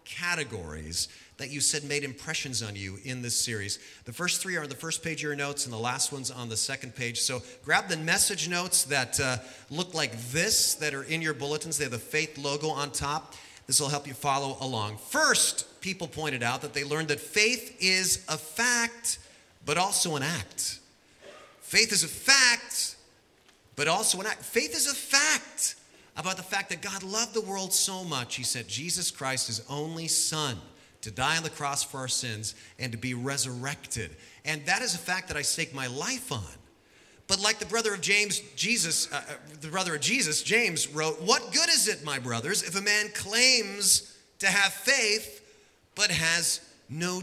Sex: male